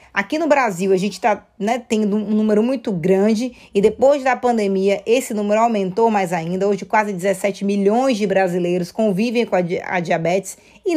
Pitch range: 205-280 Hz